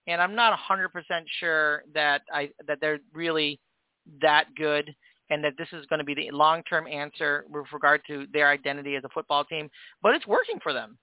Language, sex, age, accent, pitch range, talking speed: English, male, 40-59, American, 155-200 Hz, 195 wpm